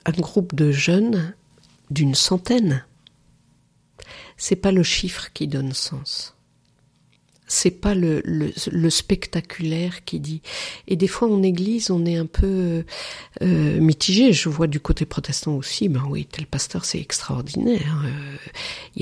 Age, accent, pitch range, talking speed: 50-69, French, 150-185 Hz, 140 wpm